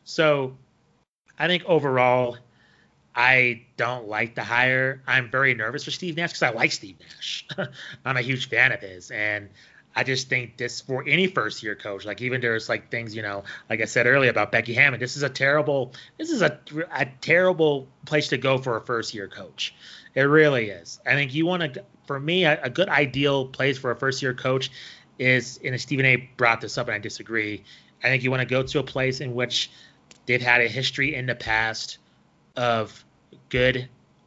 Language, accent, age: English, American, 30-49